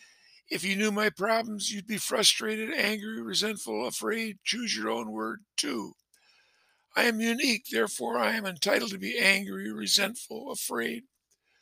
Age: 60-79